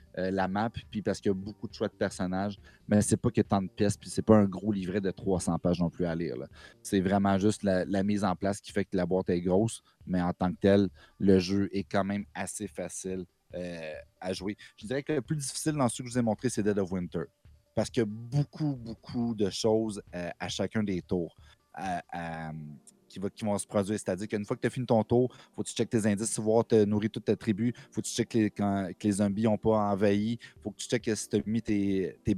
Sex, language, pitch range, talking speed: male, French, 95-115 Hz, 270 wpm